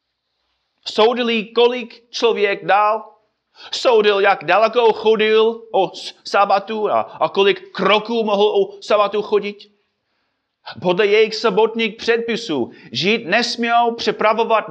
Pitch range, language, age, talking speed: 175-220 Hz, Czech, 30-49, 100 wpm